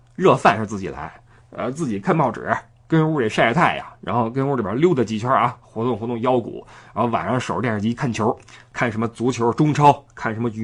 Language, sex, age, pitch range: Chinese, male, 20-39, 115-170 Hz